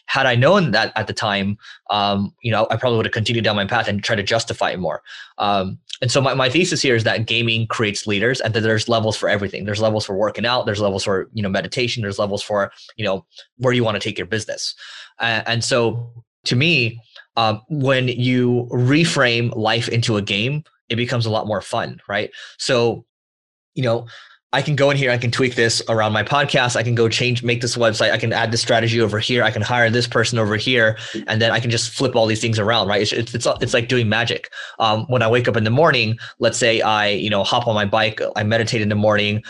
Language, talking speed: English, 245 wpm